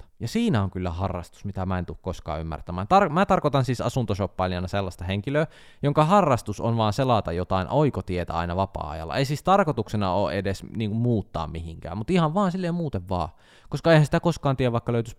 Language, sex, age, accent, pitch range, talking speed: Finnish, male, 20-39, native, 90-120 Hz, 195 wpm